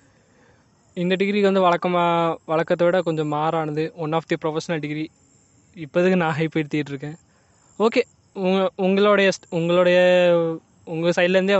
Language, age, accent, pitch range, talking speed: Tamil, 20-39, native, 155-185 Hz, 120 wpm